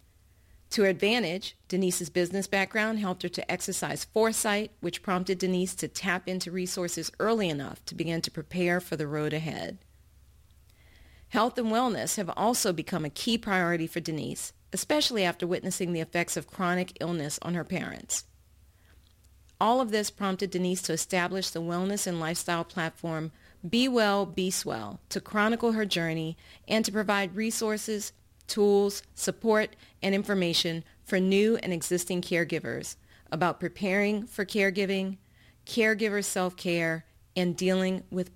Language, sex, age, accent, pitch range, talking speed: English, female, 40-59, American, 165-200 Hz, 145 wpm